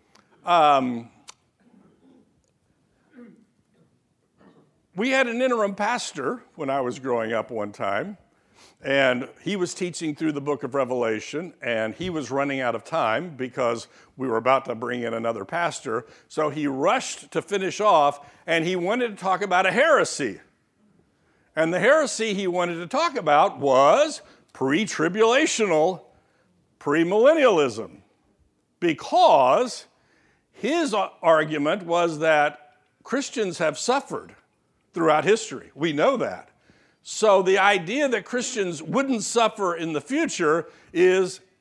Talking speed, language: 125 wpm, English